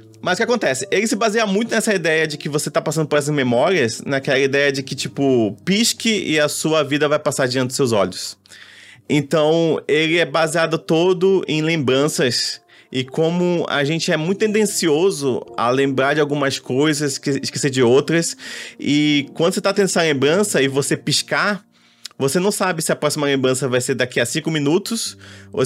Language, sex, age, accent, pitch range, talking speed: Portuguese, male, 20-39, Brazilian, 135-170 Hz, 185 wpm